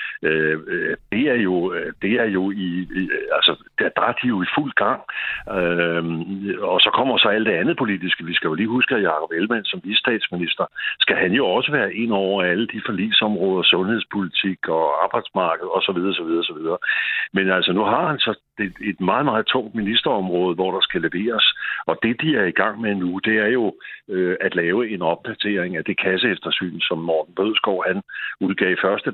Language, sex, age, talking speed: Danish, male, 60-79, 195 wpm